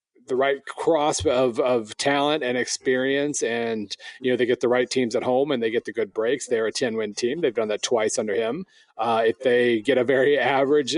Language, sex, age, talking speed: English, male, 40-59, 230 wpm